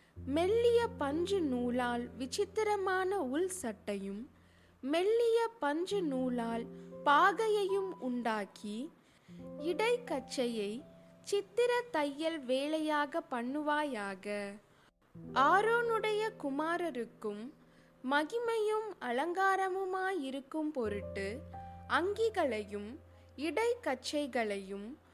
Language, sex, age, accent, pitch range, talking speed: Tamil, female, 20-39, native, 235-380 Hz, 55 wpm